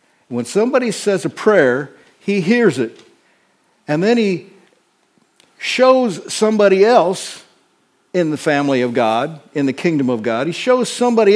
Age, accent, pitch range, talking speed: 60-79, American, 140-210 Hz, 145 wpm